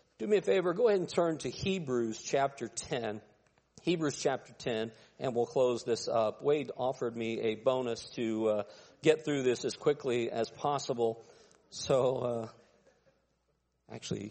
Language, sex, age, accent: English, male, 50-69, American